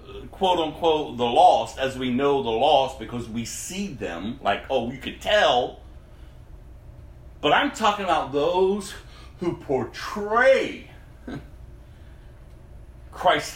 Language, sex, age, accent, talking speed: English, male, 40-59, American, 115 wpm